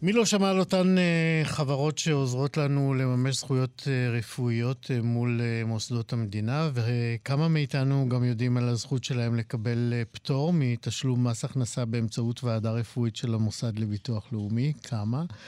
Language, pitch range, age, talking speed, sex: Hebrew, 115-140 Hz, 50-69, 150 wpm, male